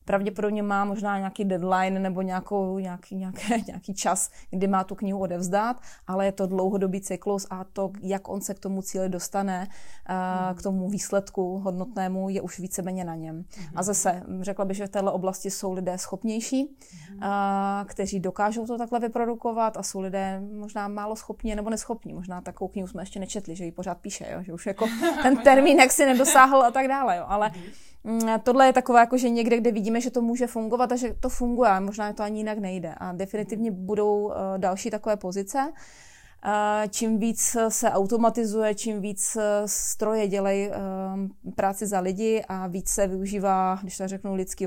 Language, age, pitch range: Czech, 20-39, 190-210 Hz